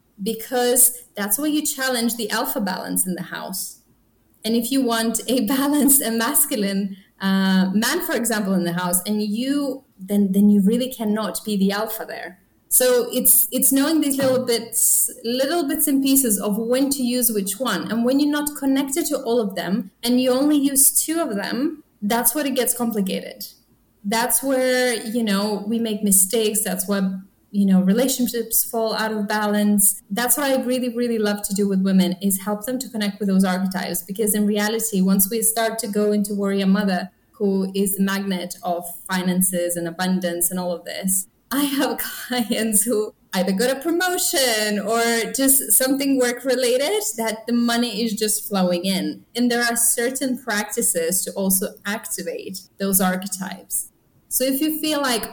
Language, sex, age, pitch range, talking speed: English, female, 20-39, 200-255 Hz, 180 wpm